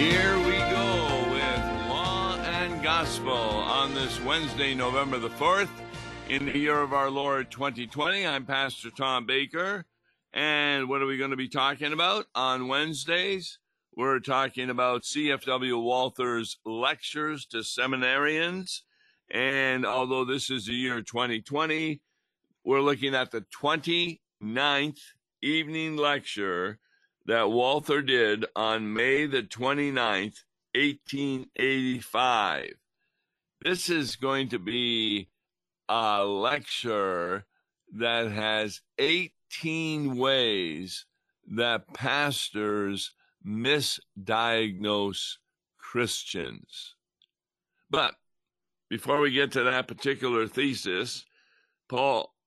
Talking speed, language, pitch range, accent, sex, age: 100 wpm, English, 115-145 Hz, American, male, 60-79